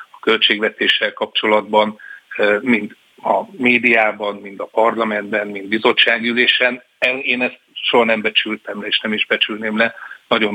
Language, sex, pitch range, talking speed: Hungarian, male, 105-115 Hz, 125 wpm